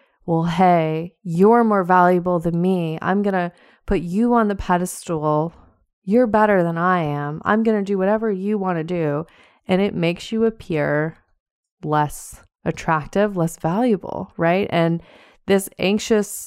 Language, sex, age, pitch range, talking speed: English, female, 20-39, 170-225 Hz, 155 wpm